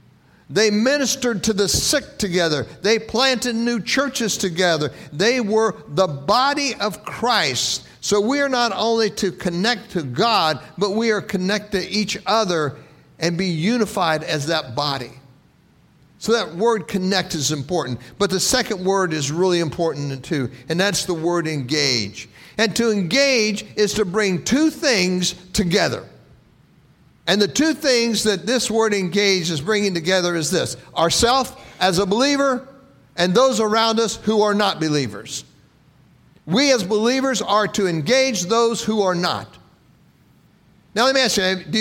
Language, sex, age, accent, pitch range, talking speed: English, male, 60-79, American, 170-225 Hz, 155 wpm